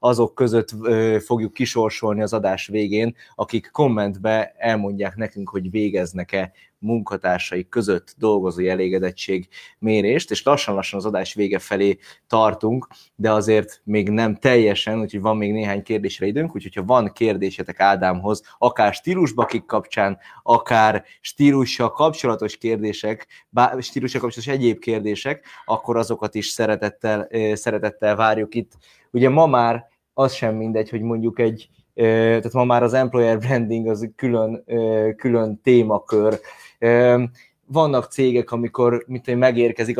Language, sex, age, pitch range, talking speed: Hungarian, male, 20-39, 105-120 Hz, 130 wpm